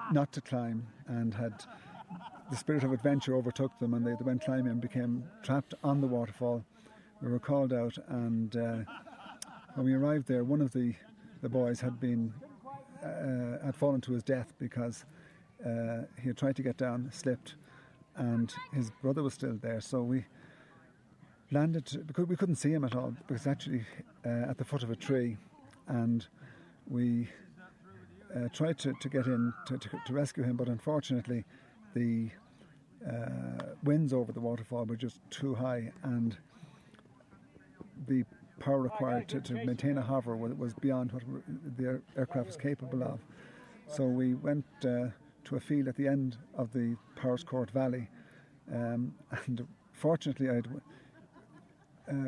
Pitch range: 120-145 Hz